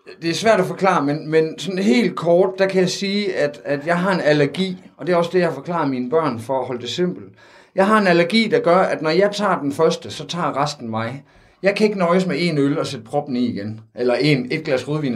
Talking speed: 265 wpm